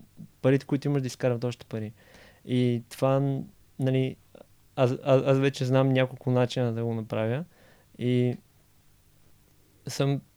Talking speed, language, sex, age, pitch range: 120 wpm, Bulgarian, male, 20-39, 115-135 Hz